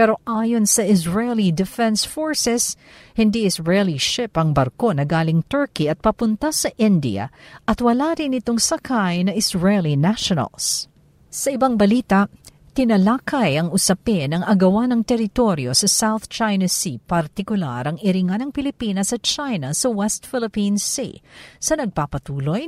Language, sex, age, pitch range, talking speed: Filipino, female, 50-69, 180-240 Hz, 145 wpm